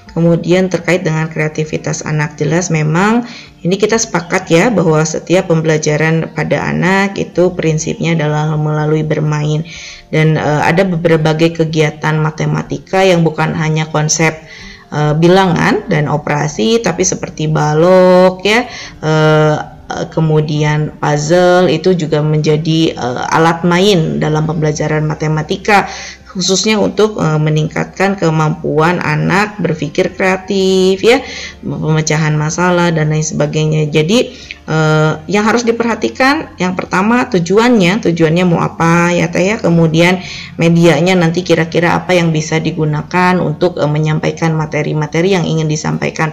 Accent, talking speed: native, 120 wpm